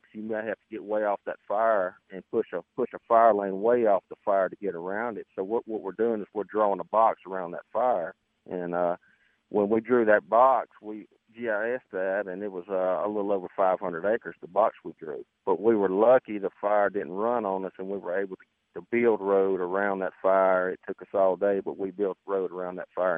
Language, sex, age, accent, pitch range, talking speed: English, male, 40-59, American, 95-110 Hz, 240 wpm